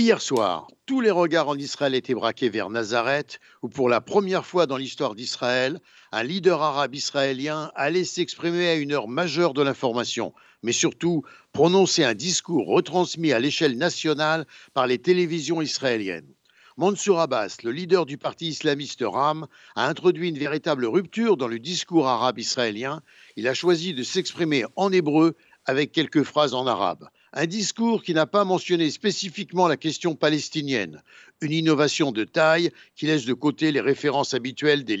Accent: French